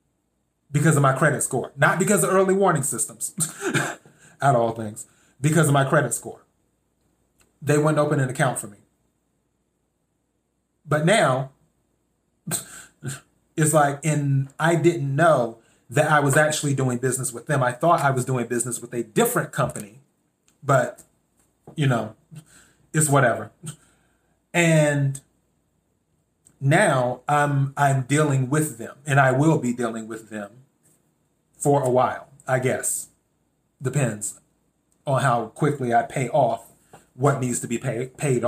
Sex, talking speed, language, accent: male, 135 wpm, English, American